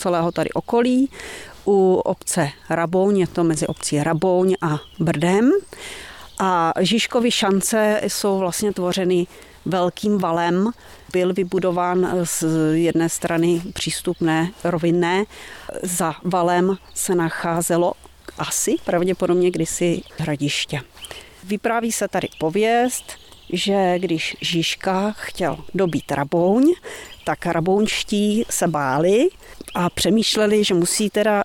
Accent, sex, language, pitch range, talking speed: native, female, Czech, 165-195 Hz, 105 wpm